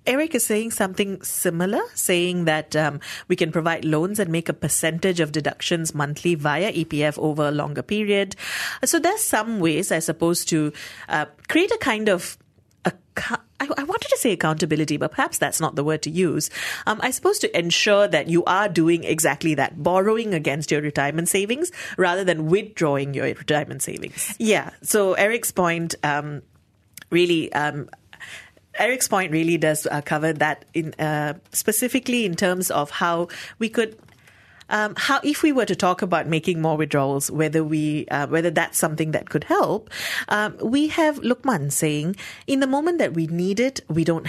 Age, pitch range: 30-49, 155-205 Hz